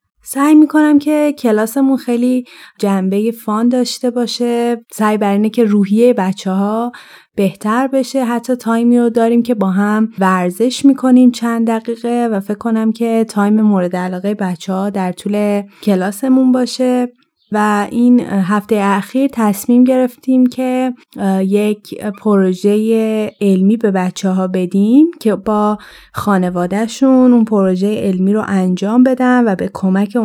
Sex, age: female, 30-49